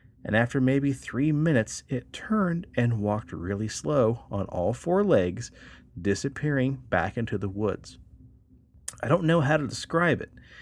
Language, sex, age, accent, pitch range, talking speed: English, male, 40-59, American, 95-140 Hz, 155 wpm